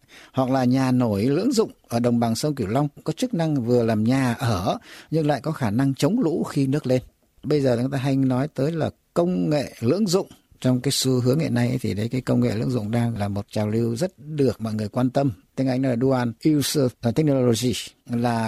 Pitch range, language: 120-155 Hz, Vietnamese